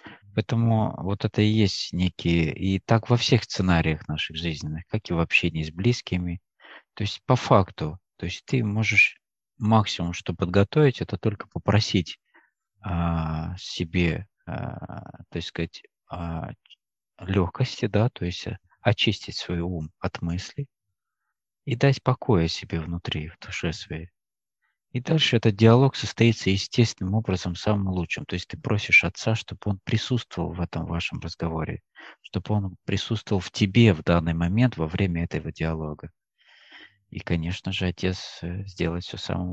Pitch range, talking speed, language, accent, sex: 85-110 Hz, 145 wpm, Russian, native, male